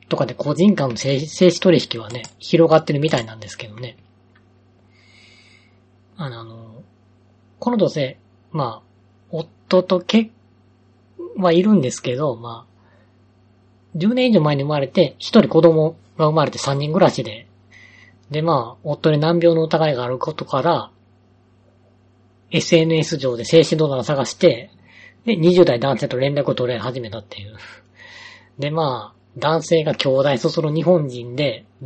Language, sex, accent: Japanese, female, native